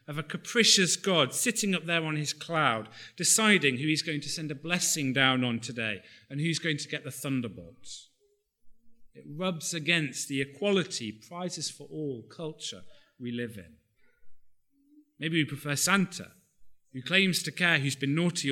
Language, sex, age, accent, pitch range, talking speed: English, male, 40-59, British, 125-180 Hz, 165 wpm